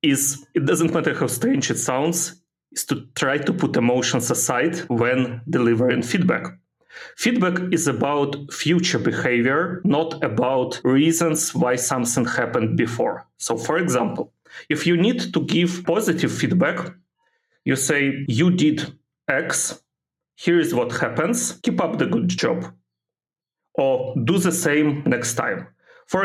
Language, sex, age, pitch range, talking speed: English, male, 40-59, 125-170 Hz, 140 wpm